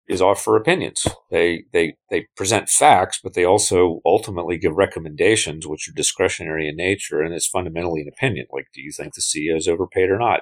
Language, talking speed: English, 195 wpm